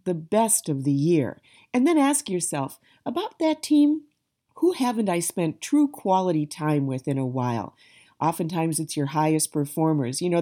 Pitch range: 155-220 Hz